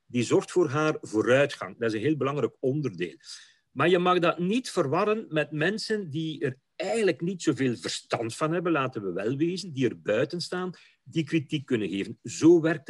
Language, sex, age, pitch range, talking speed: Dutch, male, 50-69, 125-175 Hz, 190 wpm